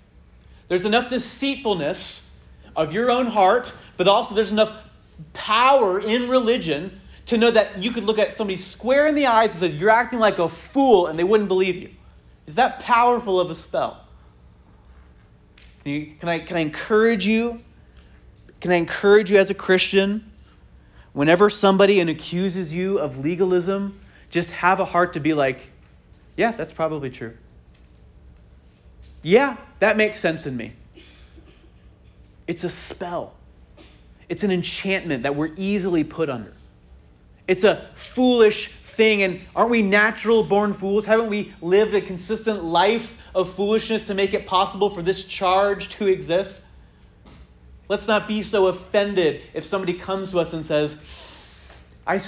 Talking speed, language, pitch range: 150 wpm, English, 135-210 Hz